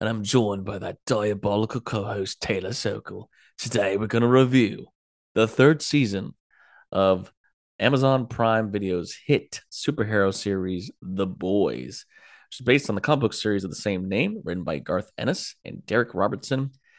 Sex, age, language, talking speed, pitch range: male, 30-49, English, 155 wpm, 95-130 Hz